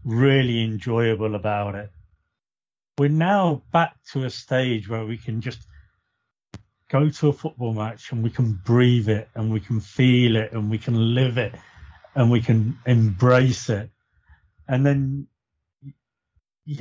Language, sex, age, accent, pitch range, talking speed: English, male, 40-59, British, 110-155 Hz, 150 wpm